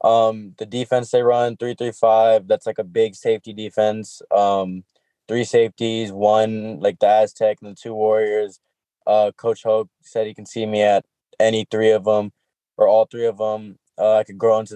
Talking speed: 195 wpm